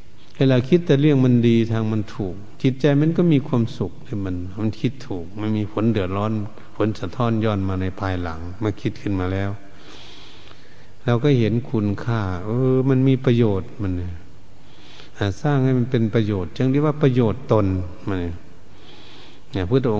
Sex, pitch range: male, 100-130 Hz